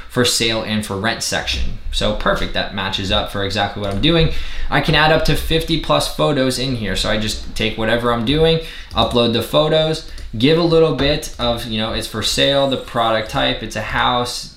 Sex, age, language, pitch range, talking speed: male, 20-39, English, 105-130 Hz, 215 wpm